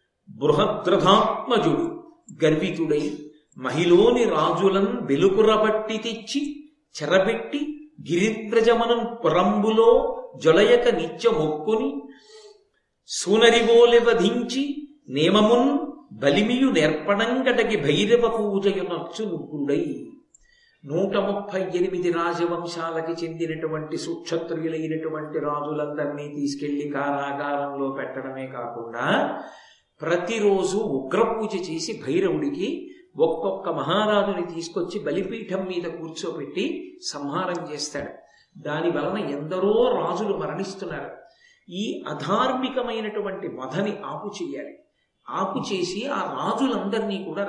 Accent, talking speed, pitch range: native, 65 wpm, 165-255 Hz